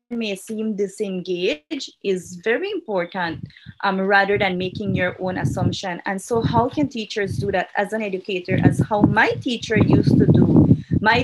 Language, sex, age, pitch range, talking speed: English, female, 20-39, 195-230 Hz, 165 wpm